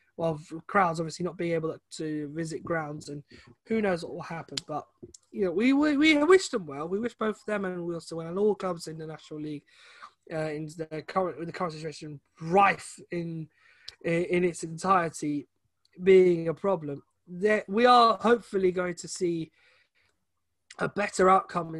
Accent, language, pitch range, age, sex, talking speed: British, English, 165-200 Hz, 20-39, male, 180 wpm